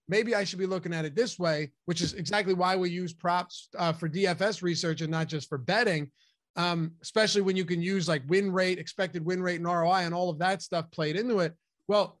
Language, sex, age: English, male, 30-49